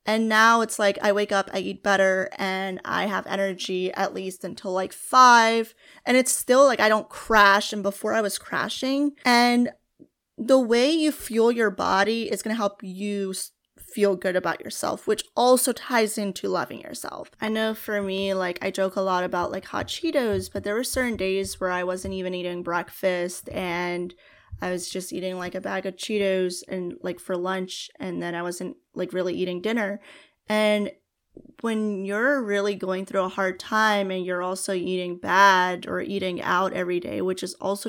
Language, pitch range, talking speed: English, 185-220 Hz, 190 wpm